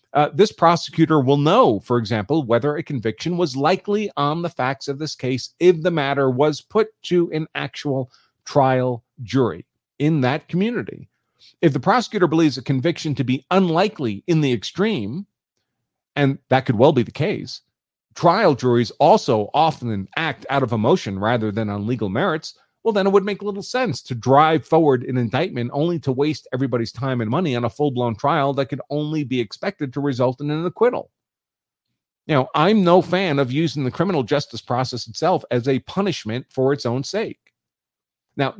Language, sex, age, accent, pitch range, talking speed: English, male, 40-59, American, 125-165 Hz, 180 wpm